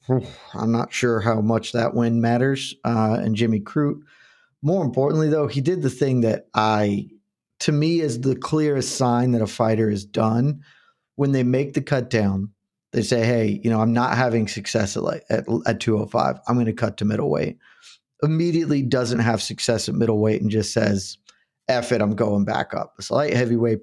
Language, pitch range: English, 110-130 Hz